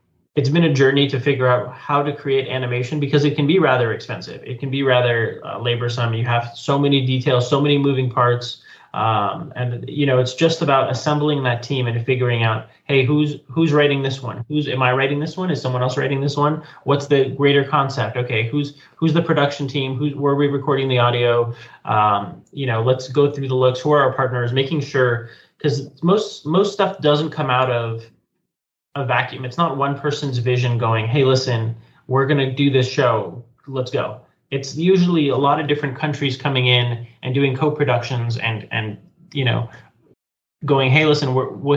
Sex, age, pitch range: male, 20-39, 120-145 Hz